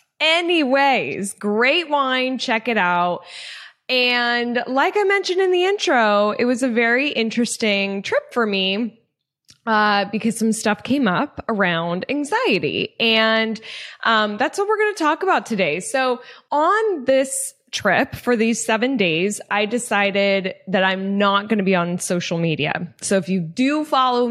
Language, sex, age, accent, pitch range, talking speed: English, female, 10-29, American, 200-270 Hz, 155 wpm